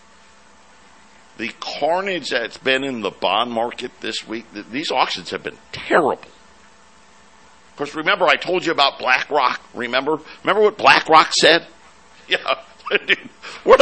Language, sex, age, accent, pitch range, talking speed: English, male, 60-79, American, 135-195 Hz, 135 wpm